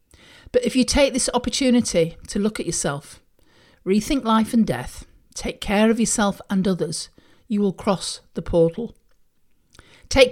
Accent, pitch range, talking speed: British, 175-230 Hz, 150 wpm